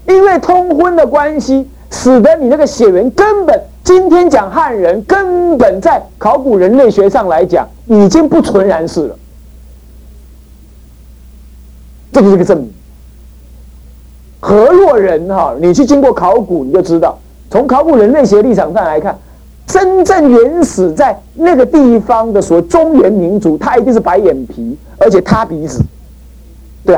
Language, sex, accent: Chinese, male, native